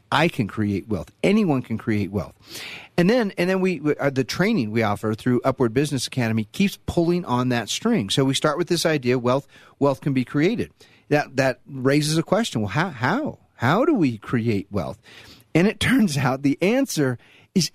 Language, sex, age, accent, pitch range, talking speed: English, male, 40-59, American, 120-175 Hz, 200 wpm